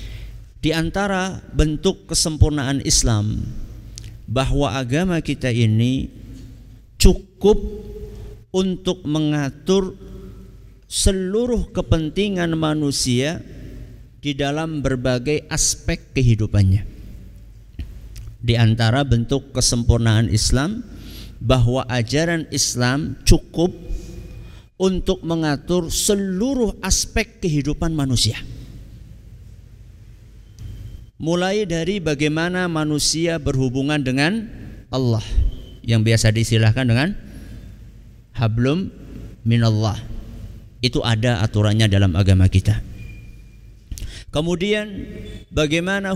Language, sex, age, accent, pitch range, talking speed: Indonesian, male, 50-69, native, 110-165 Hz, 75 wpm